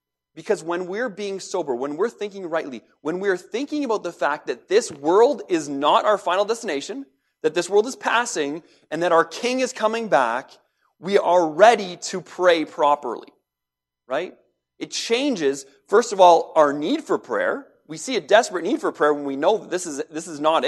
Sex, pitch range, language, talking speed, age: male, 160-230 Hz, English, 195 wpm, 30-49